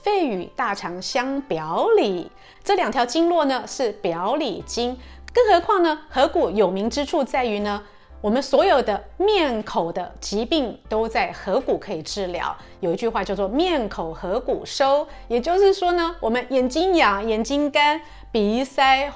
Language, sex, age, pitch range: Chinese, female, 30-49, 215-315 Hz